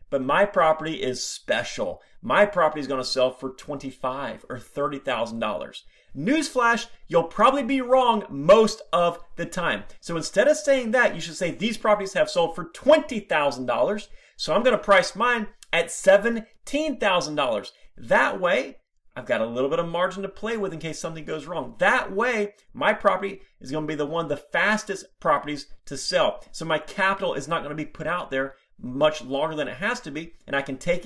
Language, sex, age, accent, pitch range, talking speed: English, male, 30-49, American, 145-215 Hz, 195 wpm